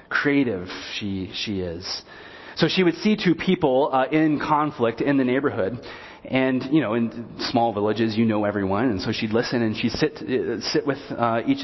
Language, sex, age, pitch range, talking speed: English, male, 30-49, 115-170 Hz, 190 wpm